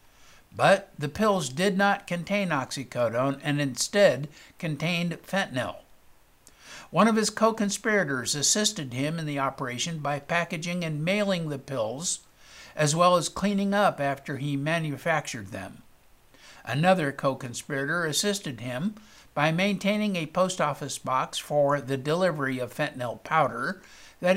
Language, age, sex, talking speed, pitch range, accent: English, 60-79, male, 130 wpm, 135-185 Hz, American